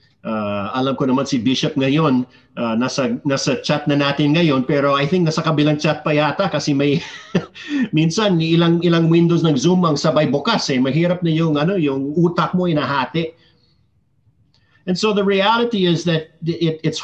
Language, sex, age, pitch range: Filipino, male, 50-69, 130-170 Hz